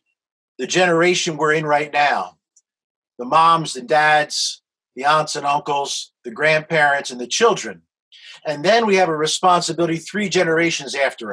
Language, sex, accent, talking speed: English, male, American, 150 wpm